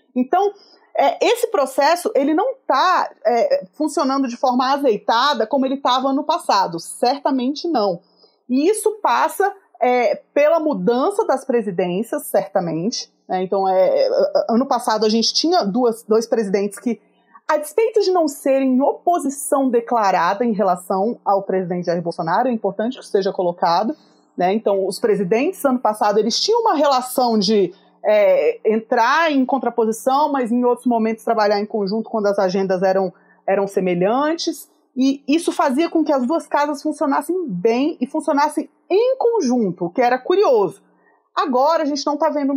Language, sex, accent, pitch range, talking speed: Portuguese, female, Brazilian, 220-315 Hz, 150 wpm